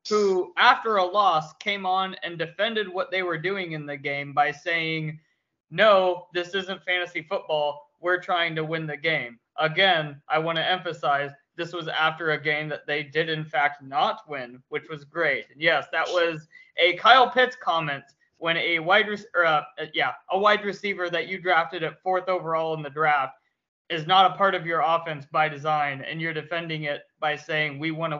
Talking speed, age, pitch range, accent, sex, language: 185 wpm, 20-39, 155-185 Hz, American, male, English